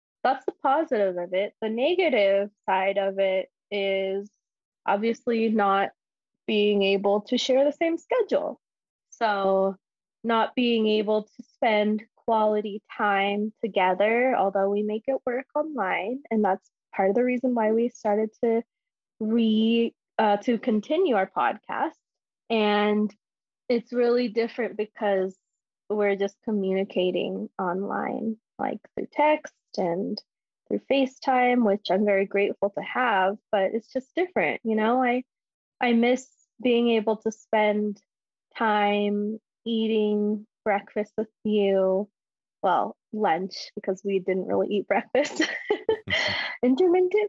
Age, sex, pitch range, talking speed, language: 20-39, female, 200-250 Hz, 125 wpm, English